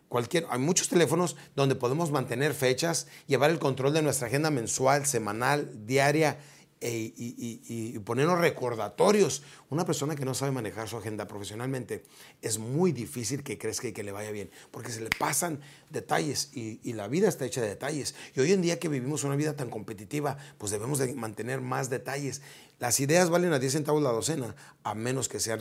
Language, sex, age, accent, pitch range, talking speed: Spanish, male, 40-59, Mexican, 120-150 Hz, 195 wpm